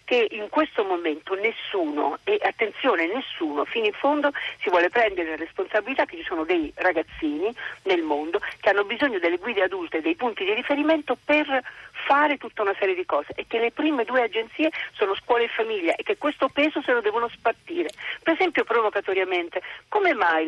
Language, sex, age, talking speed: Italian, female, 40-59, 185 wpm